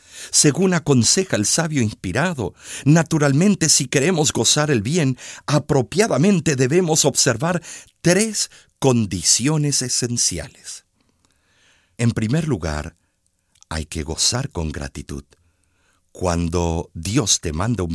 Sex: male